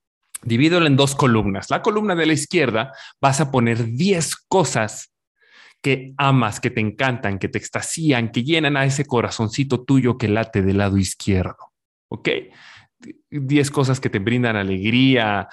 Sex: male